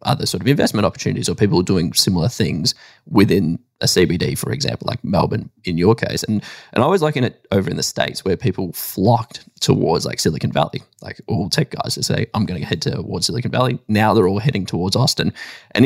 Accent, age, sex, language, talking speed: Australian, 10-29, male, English, 215 wpm